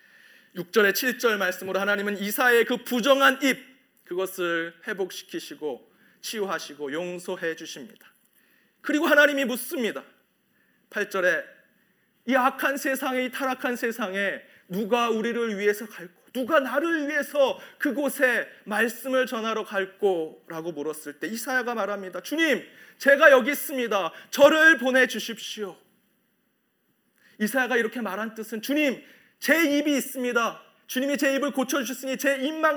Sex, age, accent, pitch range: male, 40-59, native, 210-280 Hz